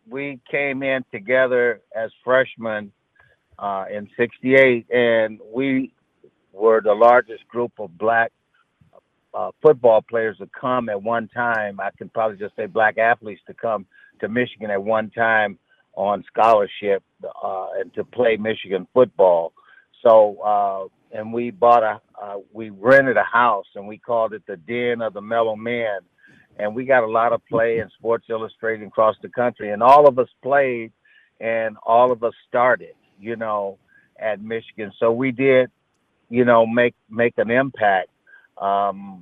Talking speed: 160 wpm